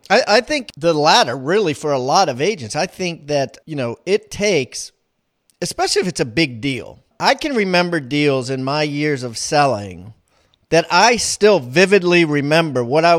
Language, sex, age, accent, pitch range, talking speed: English, male, 40-59, American, 145-185 Hz, 175 wpm